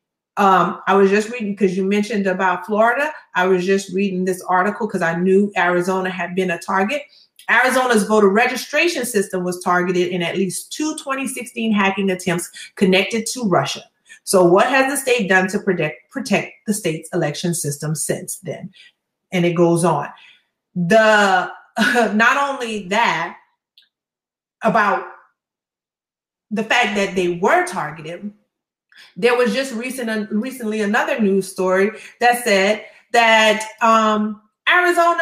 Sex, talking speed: female, 145 wpm